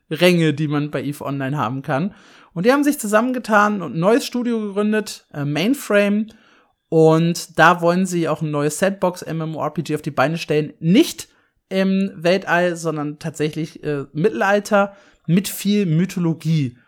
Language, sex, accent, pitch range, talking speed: German, male, German, 150-200 Hz, 155 wpm